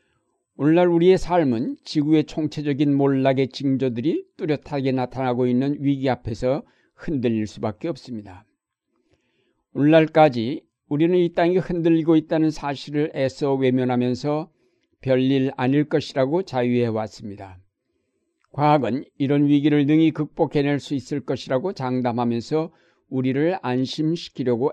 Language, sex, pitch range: Korean, male, 125-150 Hz